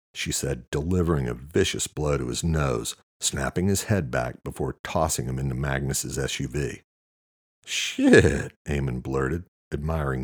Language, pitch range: English, 65-85 Hz